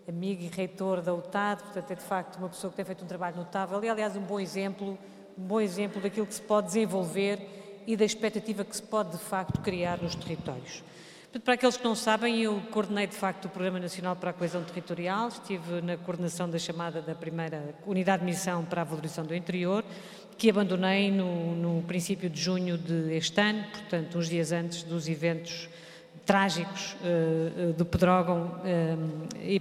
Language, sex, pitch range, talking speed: Portuguese, female, 170-200 Hz, 190 wpm